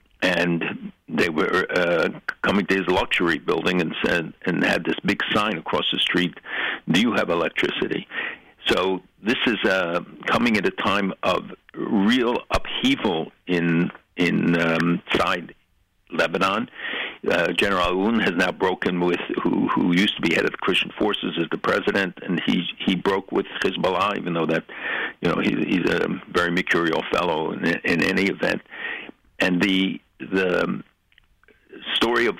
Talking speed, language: 155 wpm, English